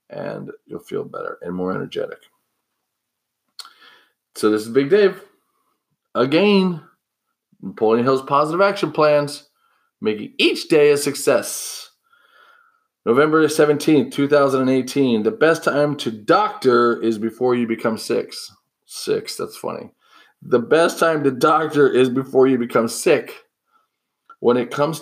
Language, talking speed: English, 125 wpm